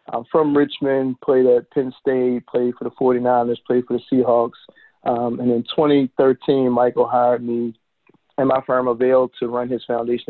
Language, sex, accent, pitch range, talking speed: English, male, American, 120-130 Hz, 175 wpm